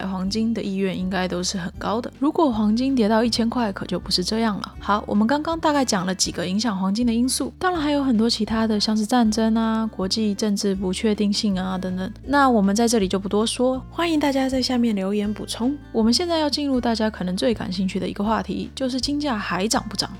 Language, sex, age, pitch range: Chinese, female, 20-39, 200-245 Hz